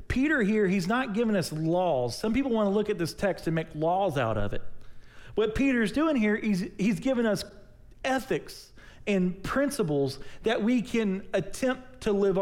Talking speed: 190 wpm